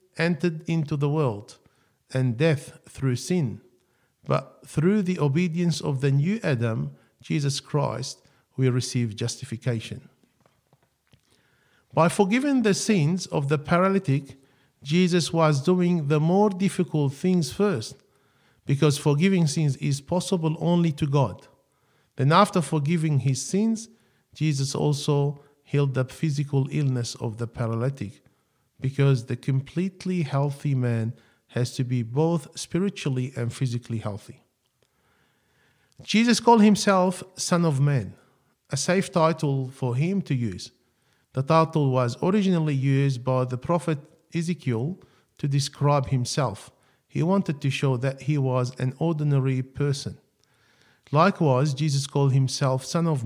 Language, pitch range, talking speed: English, 130-165 Hz, 125 wpm